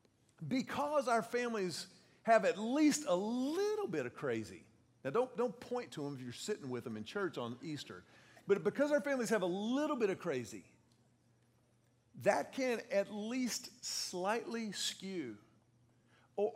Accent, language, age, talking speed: American, English, 50-69, 155 wpm